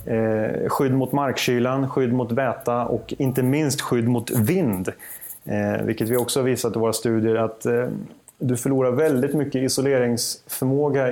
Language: Swedish